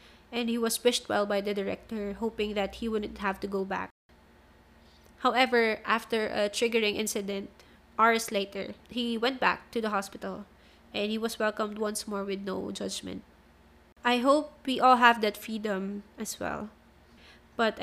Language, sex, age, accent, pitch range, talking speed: English, female, 20-39, Filipino, 205-230 Hz, 160 wpm